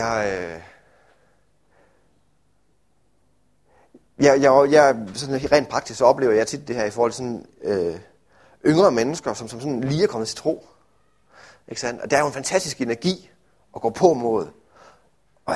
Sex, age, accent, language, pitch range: male, 30-49, native, Danish, 115-150 Hz